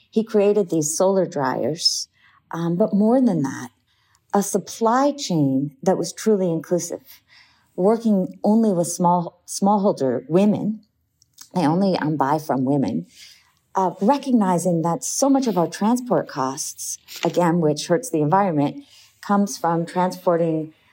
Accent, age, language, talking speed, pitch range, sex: American, 50-69, English, 130 wpm, 150-200 Hz, female